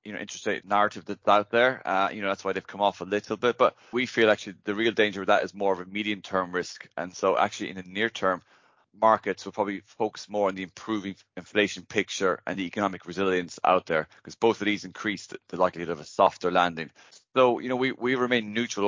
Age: 20-39